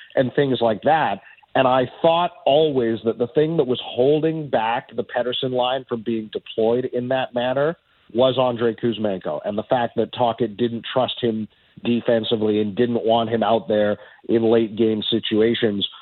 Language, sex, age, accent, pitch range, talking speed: English, male, 40-59, American, 115-145 Hz, 170 wpm